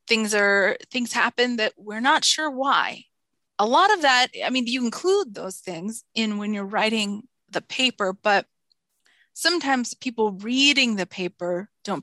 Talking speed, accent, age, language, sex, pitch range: 160 wpm, American, 20-39, English, female, 185-225 Hz